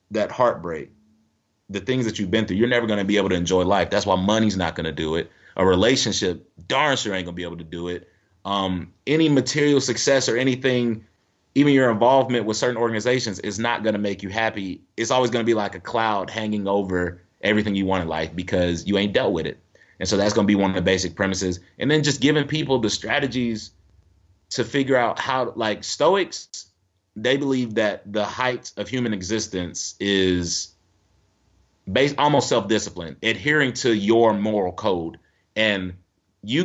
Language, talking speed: English, 195 wpm